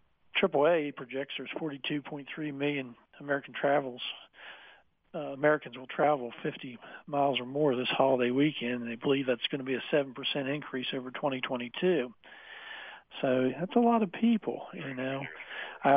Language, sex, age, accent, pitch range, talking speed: English, male, 50-69, American, 135-155 Hz, 145 wpm